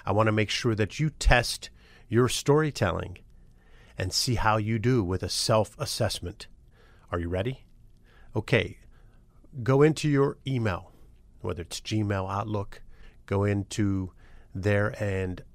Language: English